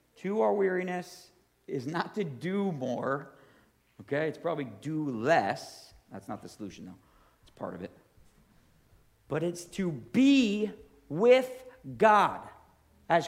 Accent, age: American, 50-69